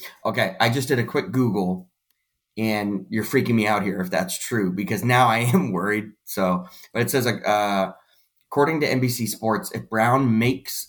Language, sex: English, male